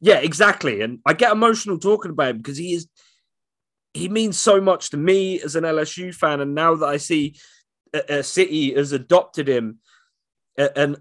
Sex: male